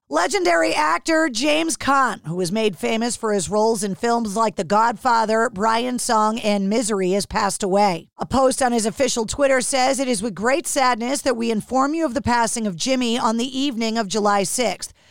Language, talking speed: English, 200 wpm